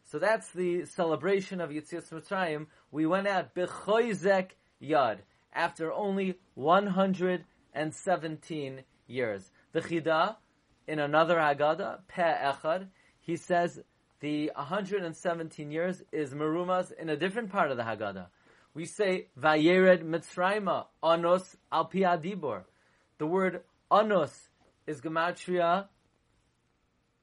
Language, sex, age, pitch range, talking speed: English, male, 30-49, 155-190 Hz, 115 wpm